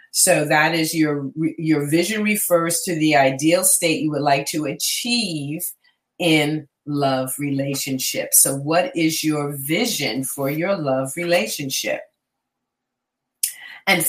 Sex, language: female, English